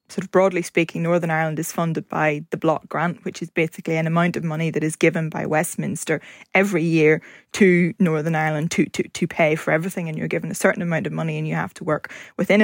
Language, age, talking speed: English, 20-39, 235 wpm